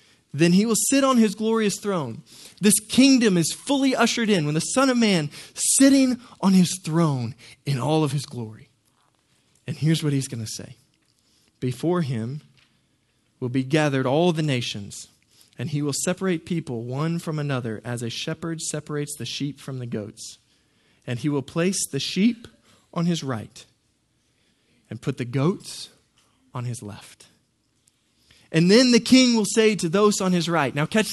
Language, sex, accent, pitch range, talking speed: English, male, American, 125-185 Hz, 170 wpm